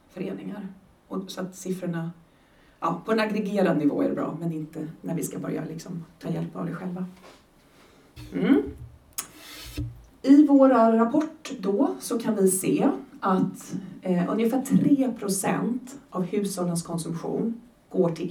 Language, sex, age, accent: Swedish, female, 40-59, native